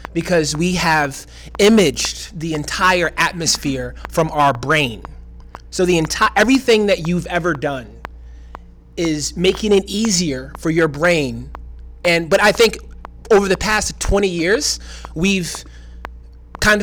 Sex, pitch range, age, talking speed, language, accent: male, 135-185 Hz, 30-49, 130 wpm, English, American